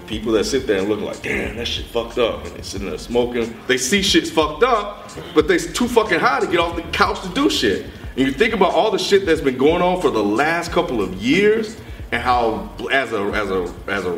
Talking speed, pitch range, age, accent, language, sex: 255 wpm, 100-135 Hz, 30-49, American, English, male